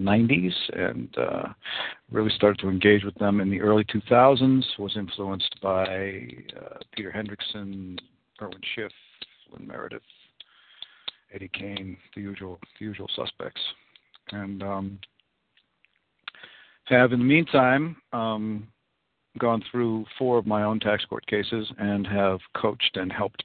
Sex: male